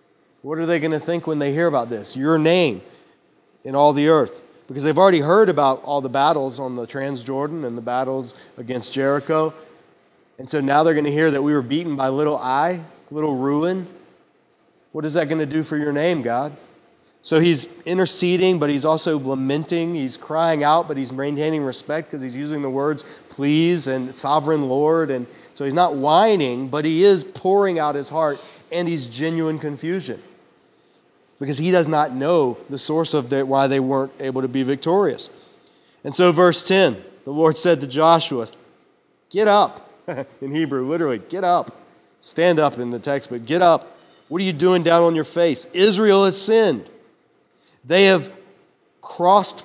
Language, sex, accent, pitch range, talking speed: English, male, American, 140-170 Hz, 185 wpm